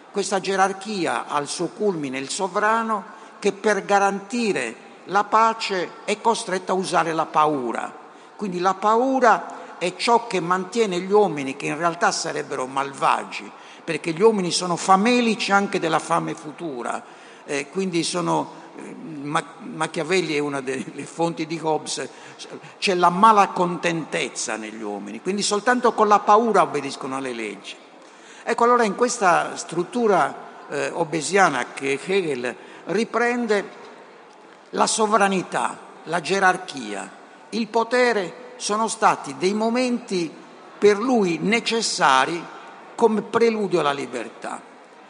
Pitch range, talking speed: 165-220 Hz, 120 wpm